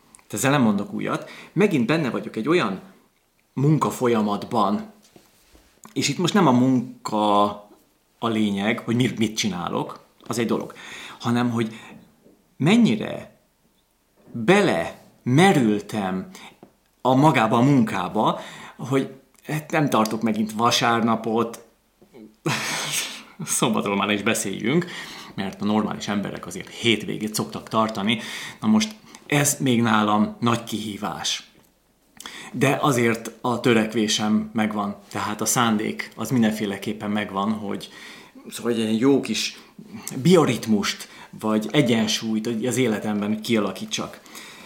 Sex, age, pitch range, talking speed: male, 30-49, 110-145 Hz, 110 wpm